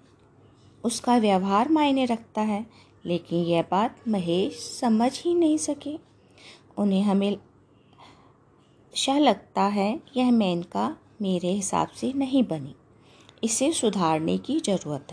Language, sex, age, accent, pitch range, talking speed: Hindi, female, 20-39, native, 185-265 Hz, 115 wpm